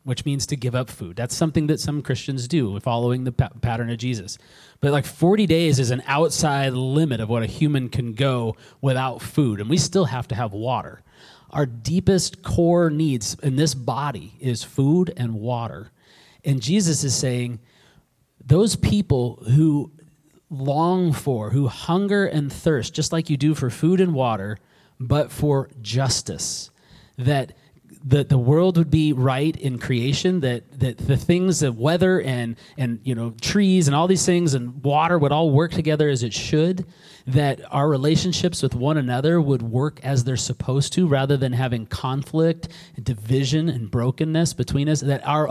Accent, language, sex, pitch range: American, English, male, 125-155 Hz